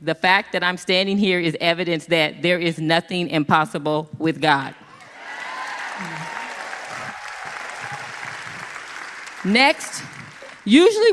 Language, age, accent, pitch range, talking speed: English, 40-59, American, 155-215 Hz, 90 wpm